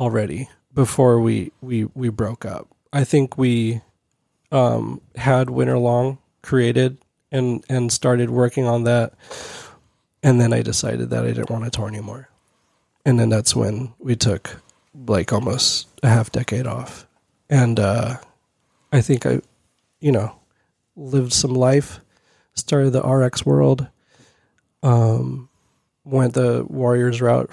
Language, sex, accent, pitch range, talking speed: English, male, American, 115-130 Hz, 135 wpm